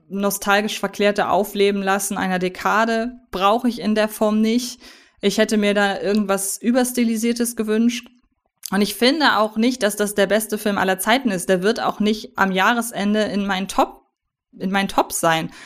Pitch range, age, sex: 200-230 Hz, 20-39, female